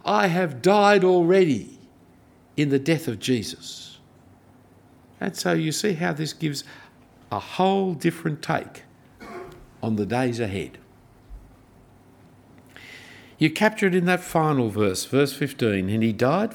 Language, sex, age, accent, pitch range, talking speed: English, male, 60-79, Australian, 115-190 Hz, 130 wpm